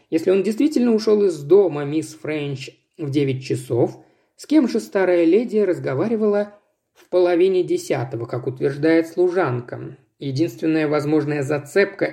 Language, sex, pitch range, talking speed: Russian, male, 140-210 Hz, 130 wpm